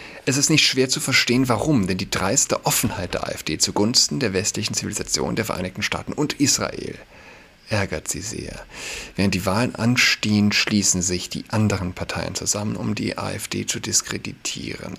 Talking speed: 160 wpm